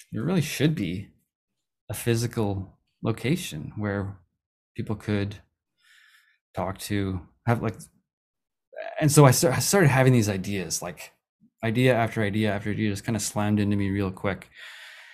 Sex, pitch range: male, 100-125 Hz